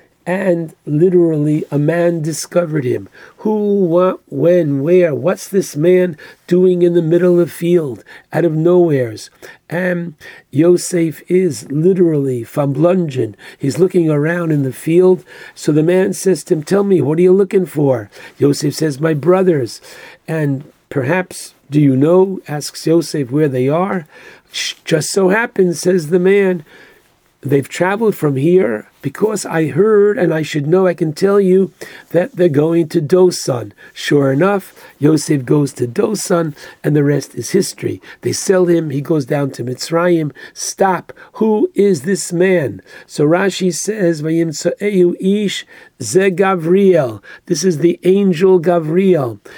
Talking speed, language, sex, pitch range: 145 wpm, English, male, 150-185 Hz